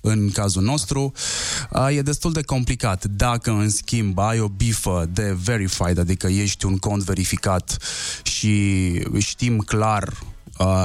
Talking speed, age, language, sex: 140 wpm, 20-39, Romanian, male